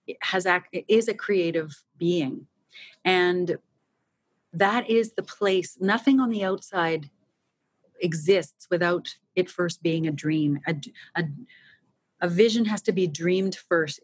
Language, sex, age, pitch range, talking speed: English, female, 30-49, 165-195 Hz, 135 wpm